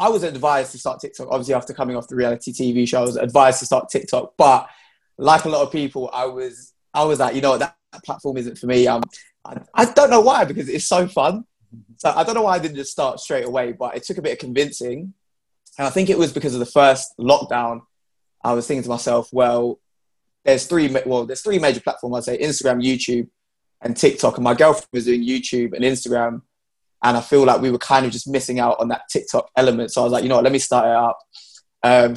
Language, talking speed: English, 245 wpm